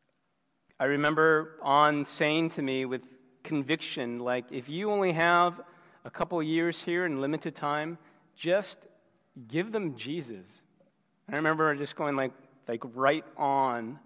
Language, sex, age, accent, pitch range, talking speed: English, male, 40-59, American, 130-160 Hz, 145 wpm